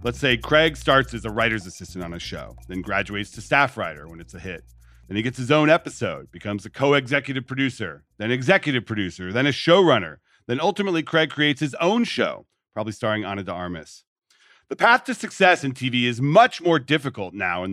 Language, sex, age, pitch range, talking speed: English, male, 40-59, 100-145 Hz, 205 wpm